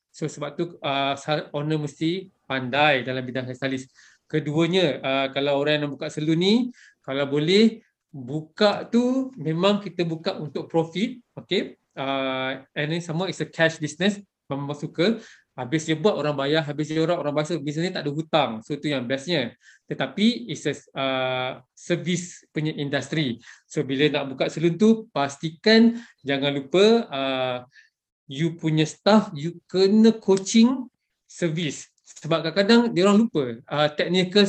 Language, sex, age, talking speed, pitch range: Malay, male, 20-39, 155 wpm, 145-190 Hz